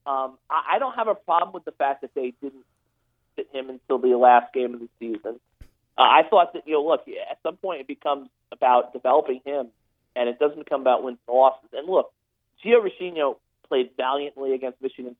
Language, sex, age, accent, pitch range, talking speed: English, male, 40-59, American, 125-155 Hz, 200 wpm